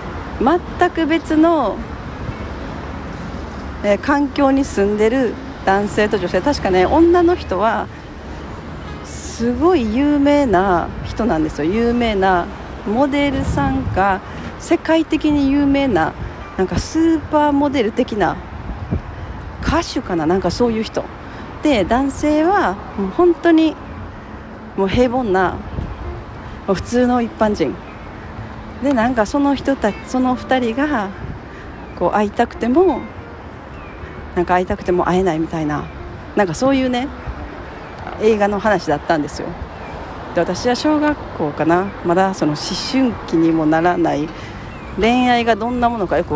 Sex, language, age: female, Japanese, 40-59